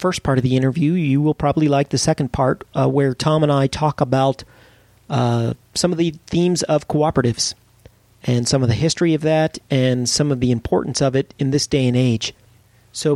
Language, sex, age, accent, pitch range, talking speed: English, male, 40-59, American, 120-140 Hz, 210 wpm